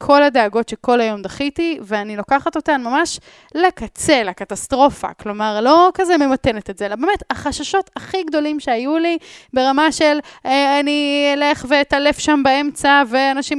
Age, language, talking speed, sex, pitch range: 10-29, Hebrew, 145 wpm, female, 215-300 Hz